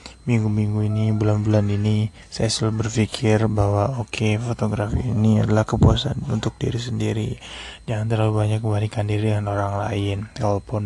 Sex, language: male, Indonesian